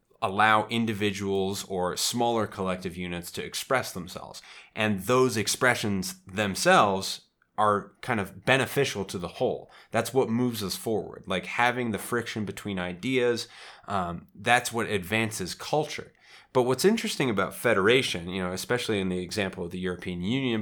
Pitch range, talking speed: 90-115 Hz, 150 wpm